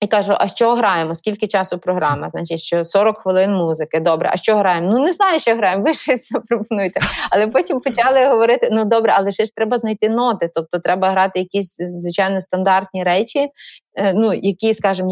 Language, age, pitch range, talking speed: Ukrainian, 20-39, 175-205 Hz, 185 wpm